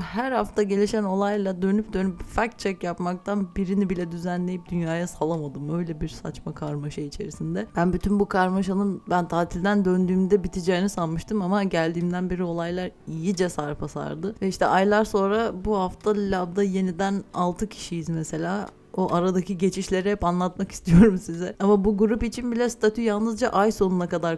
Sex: female